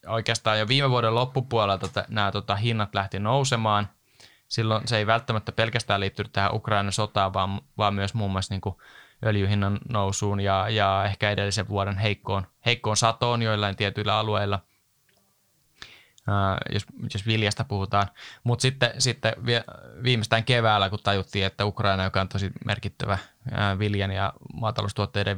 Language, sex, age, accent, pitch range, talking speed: Finnish, male, 20-39, native, 100-115 Hz, 145 wpm